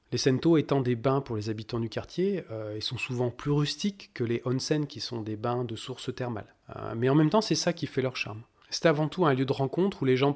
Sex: male